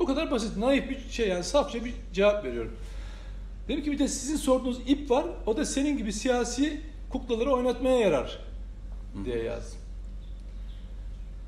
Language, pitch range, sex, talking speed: Turkish, 150-245 Hz, male, 150 wpm